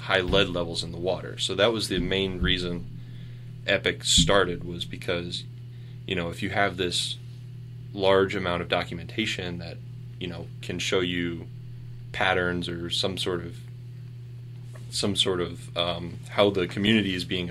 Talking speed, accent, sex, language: 160 wpm, American, male, English